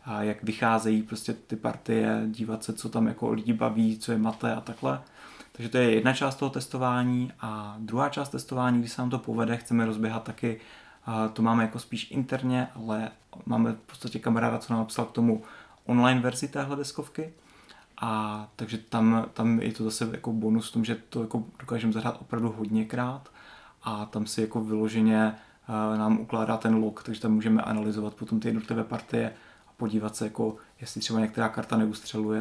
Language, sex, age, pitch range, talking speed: Czech, male, 30-49, 110-120 Hz, 180 wpm